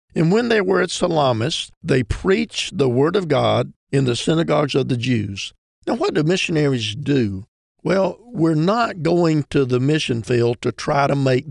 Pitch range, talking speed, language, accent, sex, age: 130-155 Hz, 180 wpm, English, American, male, 50-69